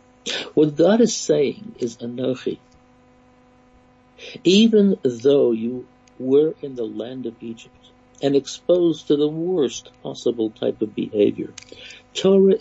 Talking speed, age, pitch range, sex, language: 120 wpm, 60-79, 125-170 Hz, male, English